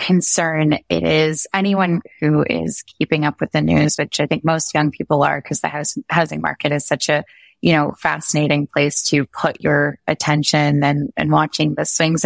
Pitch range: 150-170 Hz